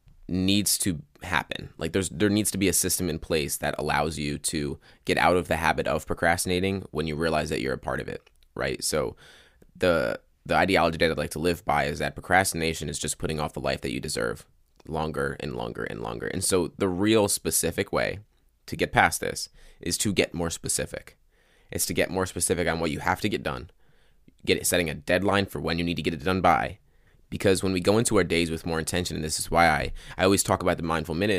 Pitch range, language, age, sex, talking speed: 75-90 Hz, English, 20-39, male, 235 wpm